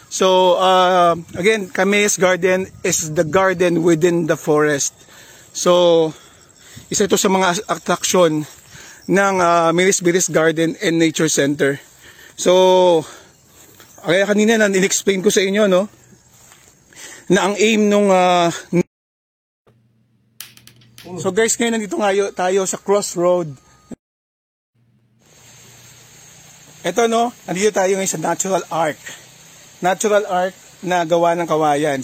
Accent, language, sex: Filipino, English, male